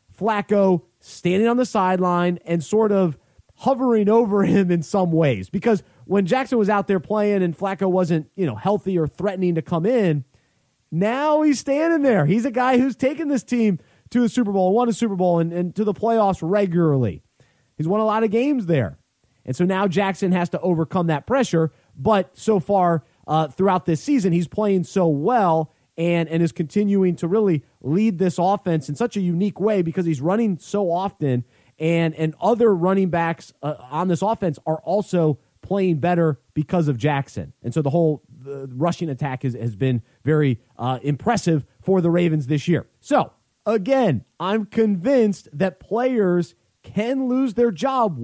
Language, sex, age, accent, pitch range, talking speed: English, male, 30-49, American, 160-215 Hz, 185 wpm